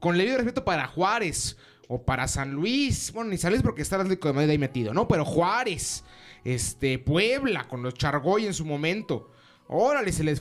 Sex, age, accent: male, 30-49, Mexican